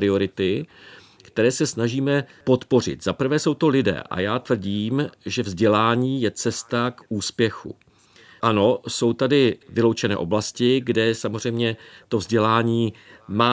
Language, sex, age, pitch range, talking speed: Czech, male, 50-69, 105-130 Hz, 130 wpm